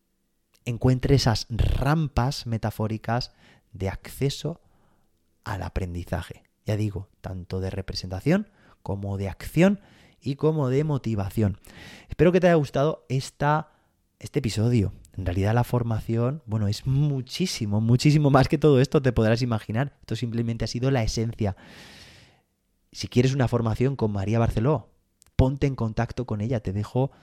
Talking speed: 140 wpm